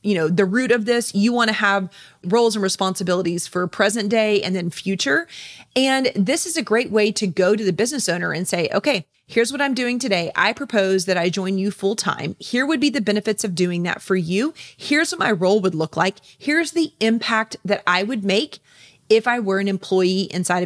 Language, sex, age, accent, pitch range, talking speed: English, female, 30-49, American, 190-245 Hz, 225 wpm